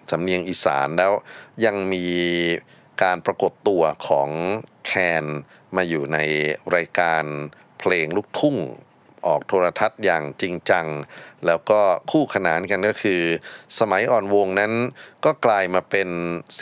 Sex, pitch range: male, 80-100 Hz